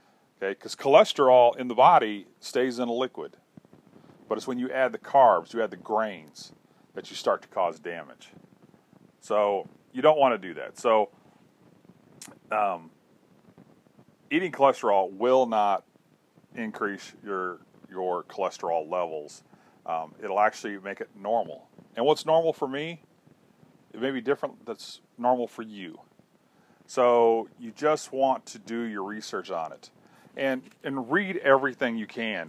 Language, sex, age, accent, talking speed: English, male, 40-59, American, 150 wpm